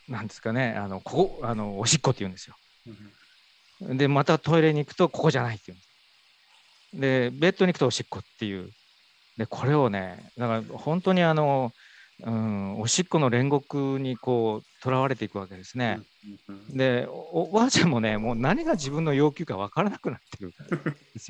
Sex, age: male, 40-59